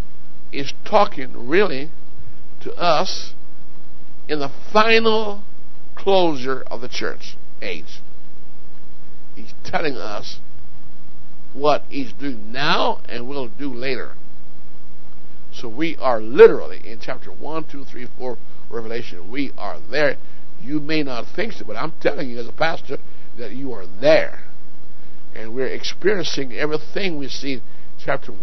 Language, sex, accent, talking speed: English, male, American, 130 wpm